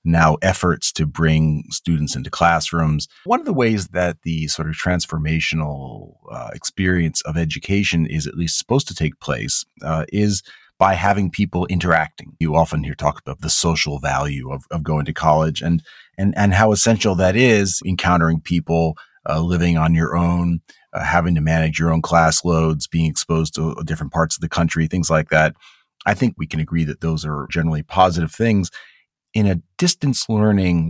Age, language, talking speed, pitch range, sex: 30-49, English, 185 wpm, 80-100 Hz, male